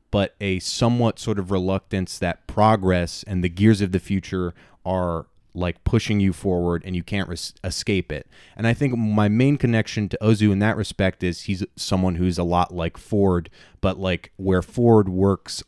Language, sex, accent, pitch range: English, male, American, 90-105 Hz